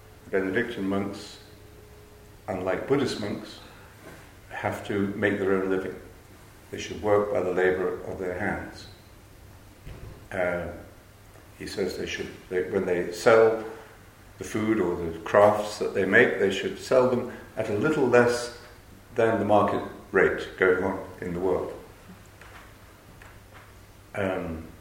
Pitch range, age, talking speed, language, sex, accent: 95-105 Hz, 50-69, 130 wpm, English, male, British